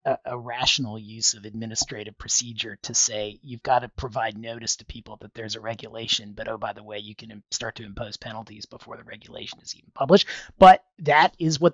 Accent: American